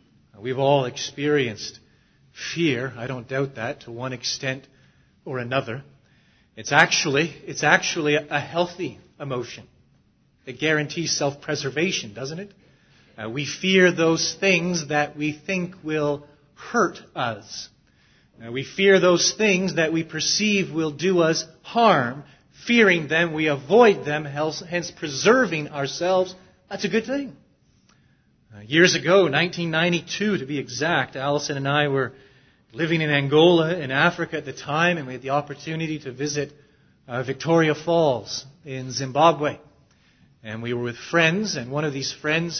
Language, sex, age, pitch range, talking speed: English, male, 30-49, 135-175 Hz, 145 wpm